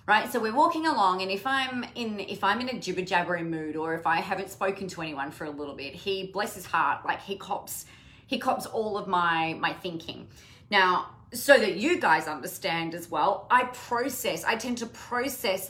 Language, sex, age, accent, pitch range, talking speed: English, female, 30-49, Australian, 170-235 Hz, 205 wpm